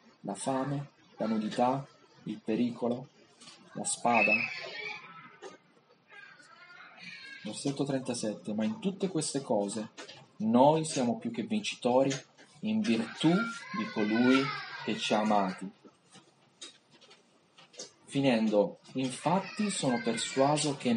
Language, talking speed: Italian, 95 wpm